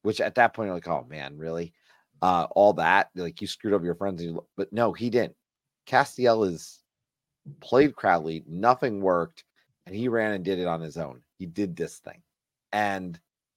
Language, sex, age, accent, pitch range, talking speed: English, male, 30-49, American, 85-115 Hz, 185 wpm